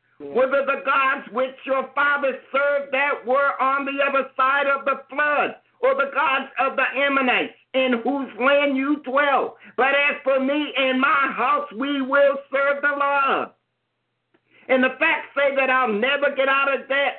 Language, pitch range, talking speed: English, 260-285 Hz, 175 wpm